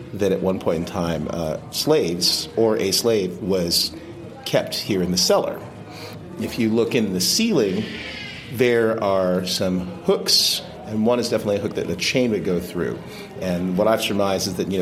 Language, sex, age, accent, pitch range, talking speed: English, male, 40-59, American, 90-110 Hz, 185 wpm